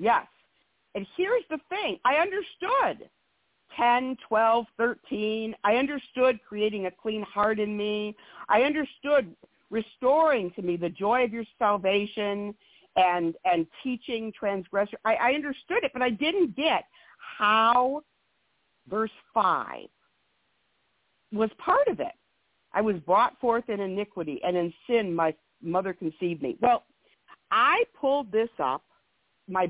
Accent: American